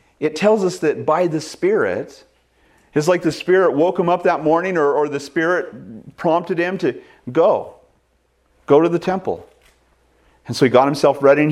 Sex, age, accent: male, 40-59, American